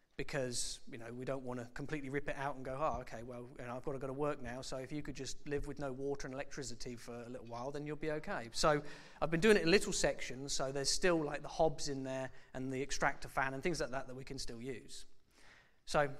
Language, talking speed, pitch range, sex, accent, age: English, 265 wpm, 130-155 Hz, male, British, 40-59